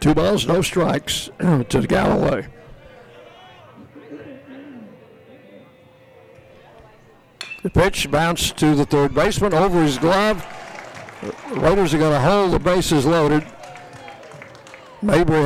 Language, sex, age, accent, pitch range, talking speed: English, male, 60-79, American, 135-170 Hz, 100 wpm